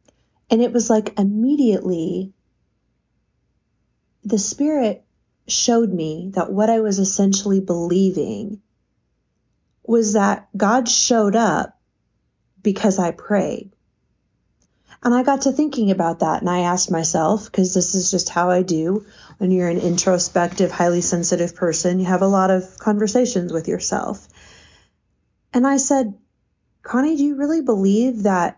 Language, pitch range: English, 180-230 Hz